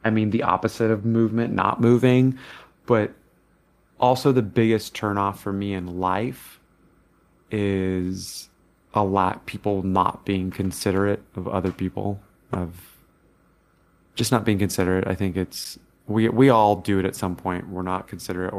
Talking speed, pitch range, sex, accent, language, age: 150 wpm, 95-105 Hz, male, American, English, 30-49